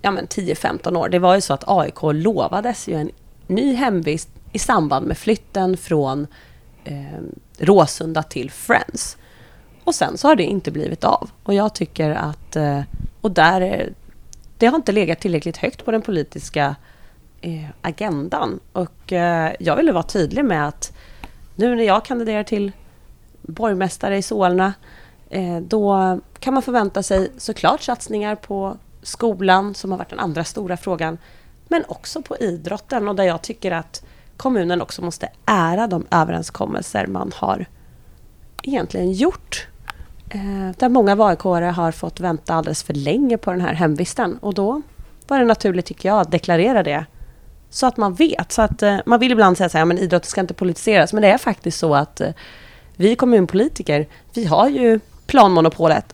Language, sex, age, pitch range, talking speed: Swedish, female, 30-49, 165-220 Hz, 170 wpm